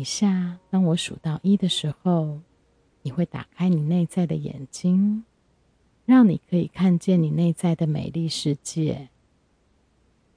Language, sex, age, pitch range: Chinese, female, 30-49, 145-180 Hz